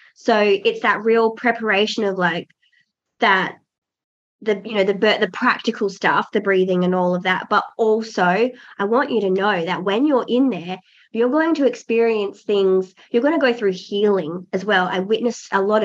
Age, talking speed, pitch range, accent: 20-39, 190 wpm, 185-225 Hz, Australian